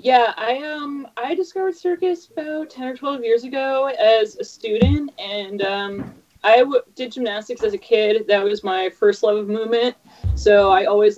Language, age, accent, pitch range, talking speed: English, 20-39, American, 170-235 Hz, 185 wpm